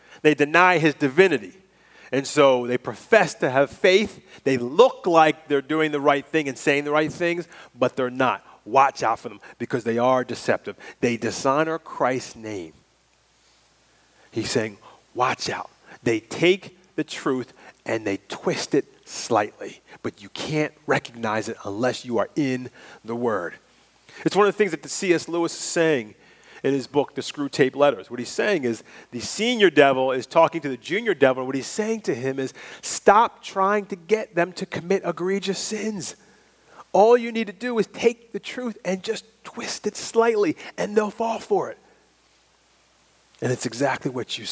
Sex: male